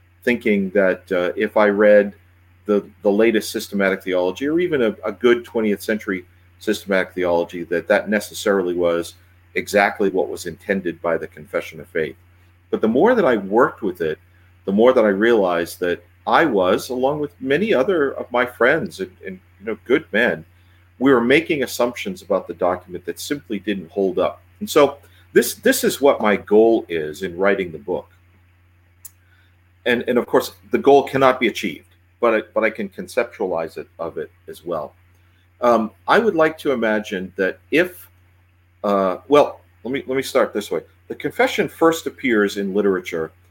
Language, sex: English, male